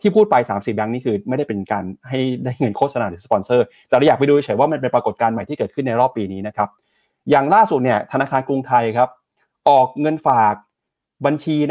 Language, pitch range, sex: Thai, 110-150 Hz, male